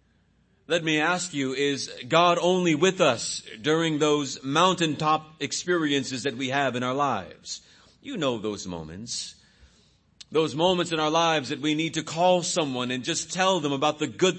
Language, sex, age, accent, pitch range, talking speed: English, male, 40-59, American, 115-170 Hz, 170 wpm